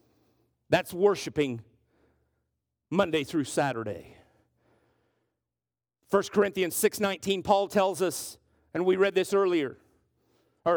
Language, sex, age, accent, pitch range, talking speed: English, male, 50-69, American, 185-270 Hz, 95 wpm